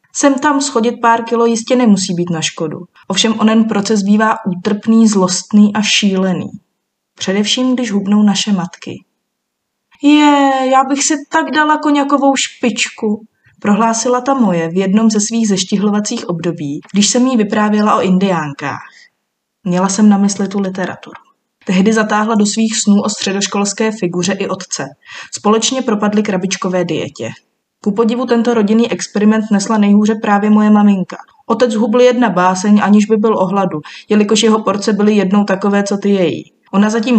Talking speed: 155 wpm